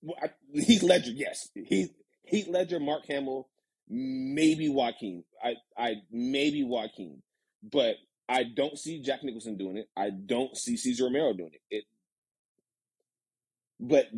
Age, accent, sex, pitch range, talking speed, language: 30-49, American, male, 110-175 Hz, 125 wpm, English